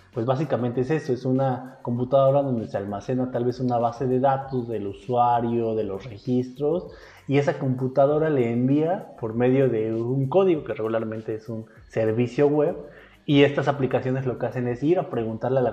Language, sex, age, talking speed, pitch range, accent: Spanish, male, 20-39, 185 wpm, 115-145 Hz, Mexican